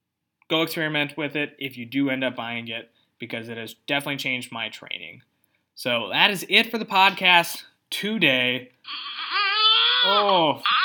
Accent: American